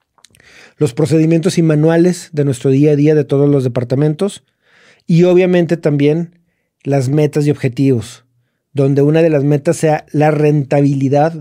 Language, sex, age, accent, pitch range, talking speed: Spanish, male, 40-59, Mexican, 130-155 Hz, 145 wpm